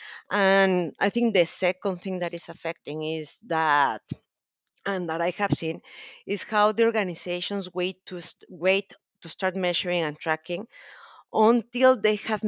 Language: English